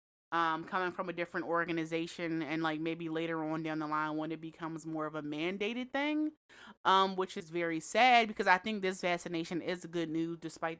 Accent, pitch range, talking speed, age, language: American, 155-170 Hz, 205 wpm, 20-39, English